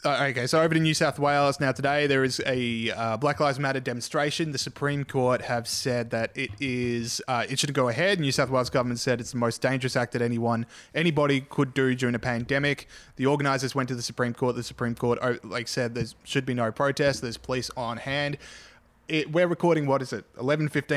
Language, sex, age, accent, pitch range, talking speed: English, male, 20-39, Australian, 115-140 Hz, 220 wpm